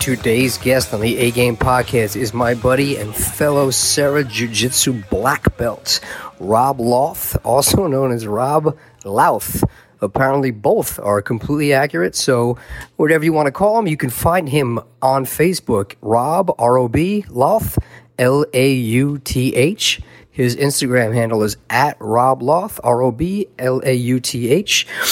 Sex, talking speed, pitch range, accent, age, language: male, 125 wpm, 120-140 Hz, American, 40-59, English